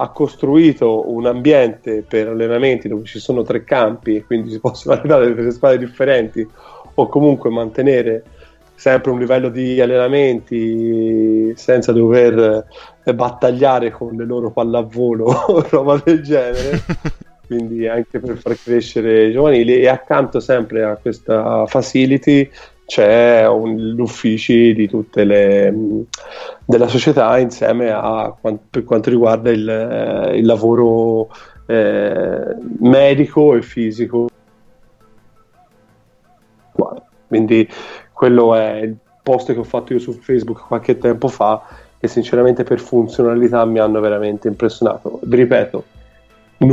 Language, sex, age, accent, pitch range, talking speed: Italian, male, 30-49, native, 110-125 Hz, 125 wpm